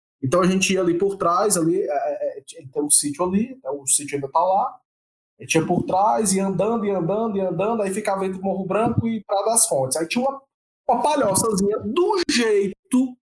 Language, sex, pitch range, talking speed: Portuguese, male, 180-240 Hz, 220 wpm